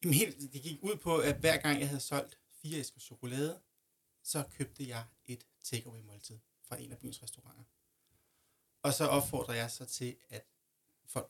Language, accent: Danish, native